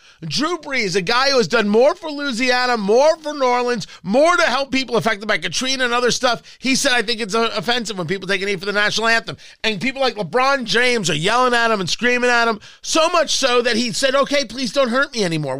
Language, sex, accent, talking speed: English, male, American, 240 wpm